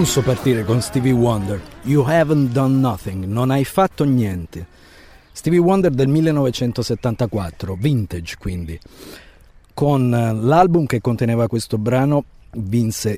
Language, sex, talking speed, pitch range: English, male, 125 wpm, 95-140 Hz